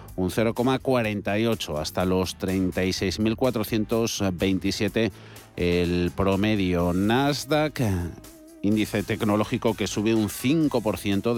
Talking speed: 75 wpm